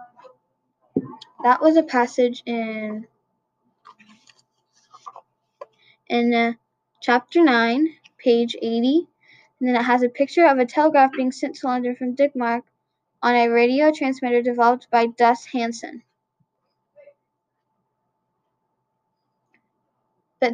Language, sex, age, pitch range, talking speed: English, female, 10-29, 235-275 Hz, 100 wpm